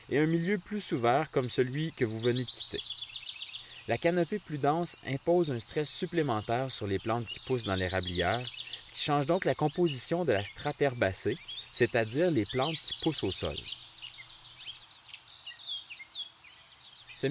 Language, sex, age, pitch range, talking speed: French, male, 30-49, 110-150 Hz, 160 wpm